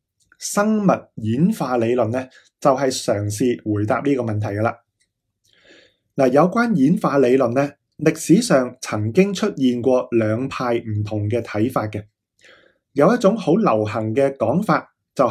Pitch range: 115-155 Hz